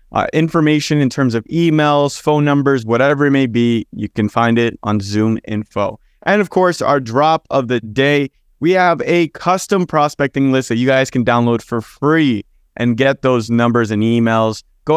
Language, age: English, 20-39